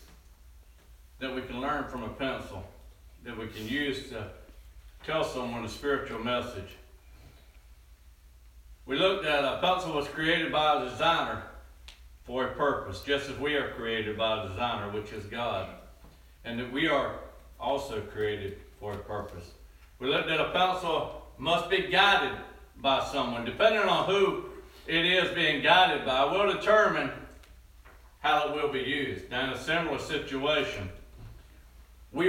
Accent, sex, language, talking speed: American, male, English, 150 wpm